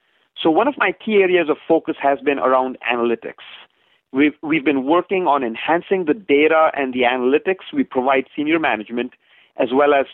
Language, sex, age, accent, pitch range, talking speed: English, male, 40-59, Indian, 135-170 Hz, 180 wpm